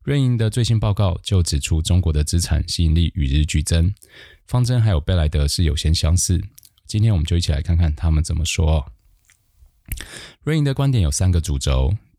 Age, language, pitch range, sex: 20-39, Chinese, 80-100 Hz, male